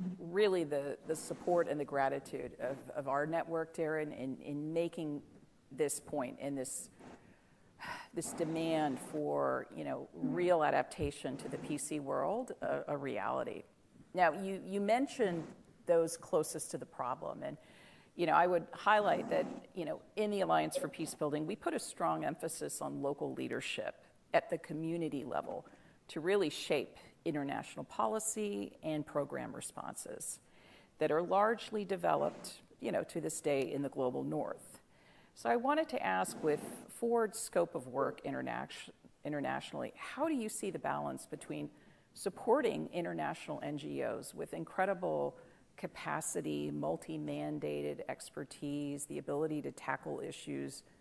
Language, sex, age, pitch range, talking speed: English, female, 50-69, 145-190 Hz, 140 wpm